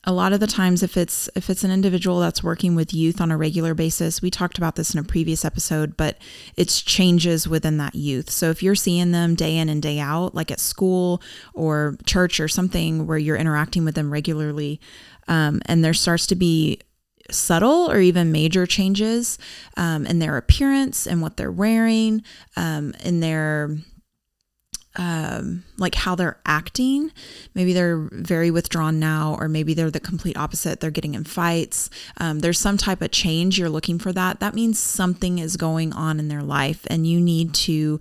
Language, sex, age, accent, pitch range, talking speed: English, female, 20-39, American, 160-185 Hz, 190 wpm